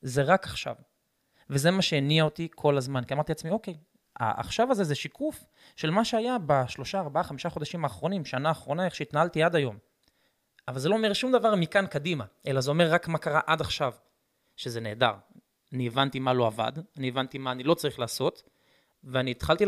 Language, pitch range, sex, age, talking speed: Hebrew, 135-190 Hz, male, 20-39, 190 wpm